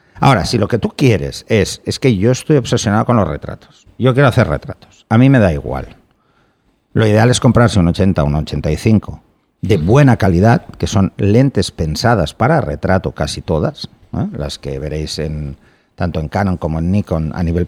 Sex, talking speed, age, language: male, 190 wpm, 50-69, Spanish